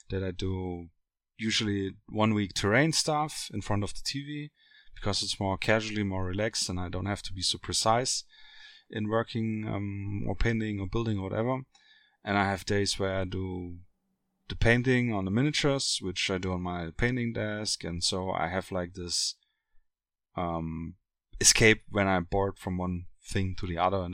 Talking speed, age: 185 wpm, 30-49